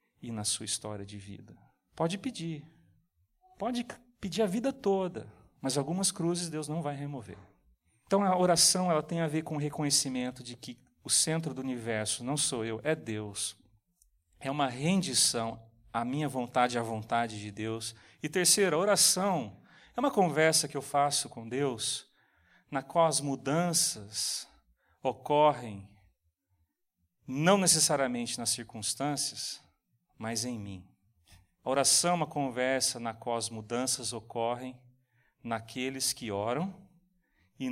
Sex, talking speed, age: male, 140 wpm, 40-59